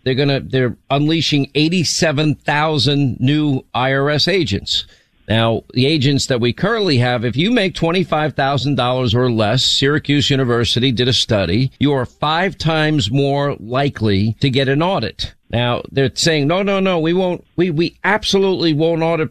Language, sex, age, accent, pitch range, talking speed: English, male, 50-69, American, 125-160 Hz, 150 wpm